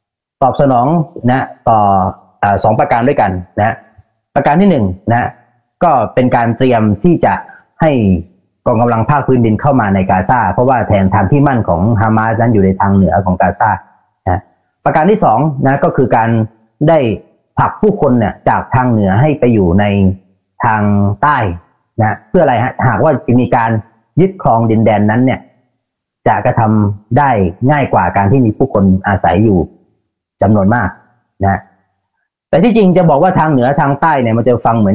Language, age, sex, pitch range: Thai, 30-49, male, 100-135 Hz